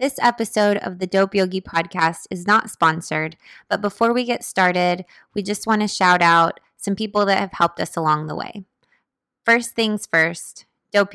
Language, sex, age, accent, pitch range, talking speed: English, female, 20-39, American, 175-205 Hz, 185 wpm